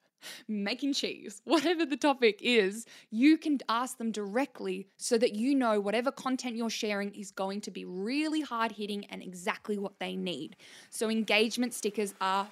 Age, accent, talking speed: 10-29, Australian, 170 wpm